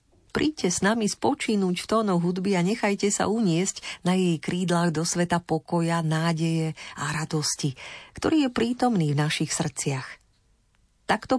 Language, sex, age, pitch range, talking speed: Slovak, female, 40-59, 155-200 Hz, 140 wpm